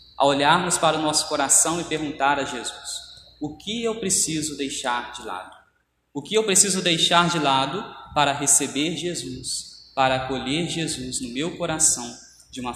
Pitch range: 130-160 Hz